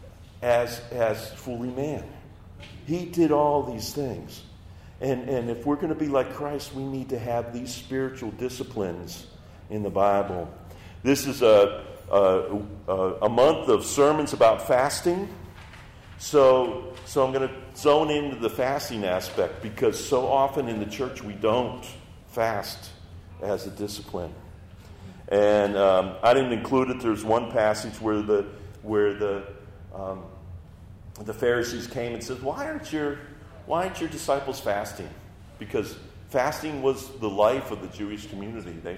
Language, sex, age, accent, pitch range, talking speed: English, male, 50-69, American, 95-130 Hz, 150 wpm